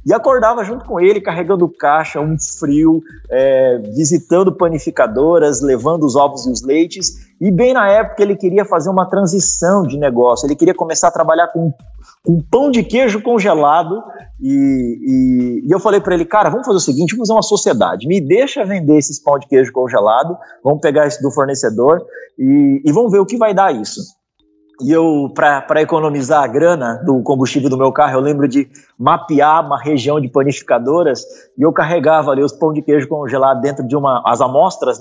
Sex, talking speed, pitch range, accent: male, 190 wpm, 130-185 Hz, Brazilian